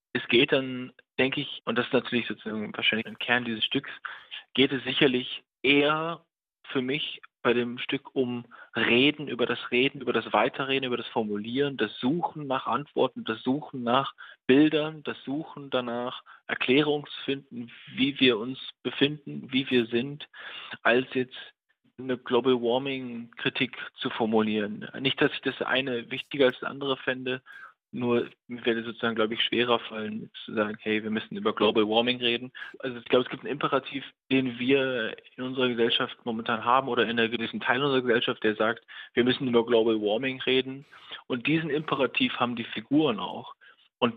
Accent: German